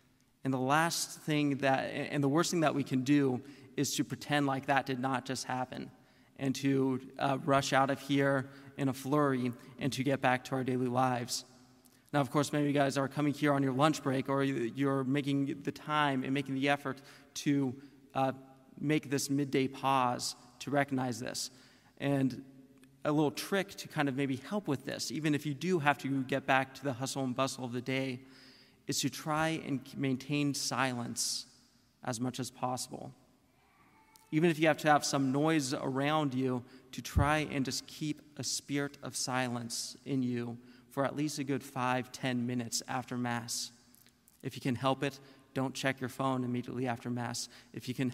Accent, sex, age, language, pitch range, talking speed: American, male, 30-49, English, 125-140 Hz, 190 wpm